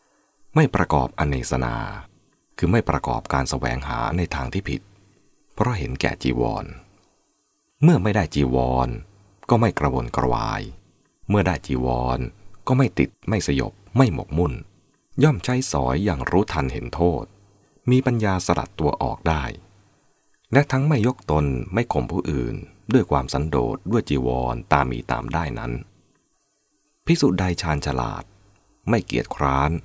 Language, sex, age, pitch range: English, male, 30-49, 70-105 Hz